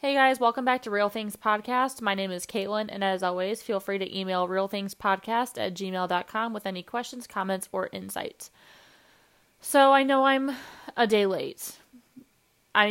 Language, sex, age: English, female, 20-39